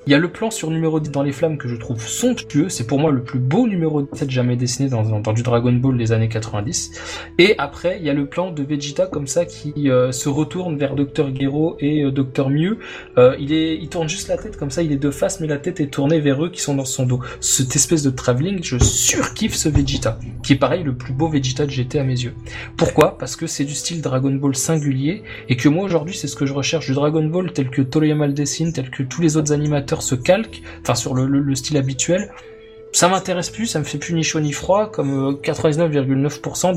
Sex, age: male, 20-39